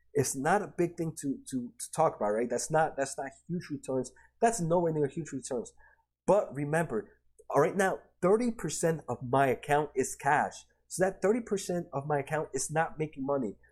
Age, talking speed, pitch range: 30-49, 190 wpm, 135-170 Hz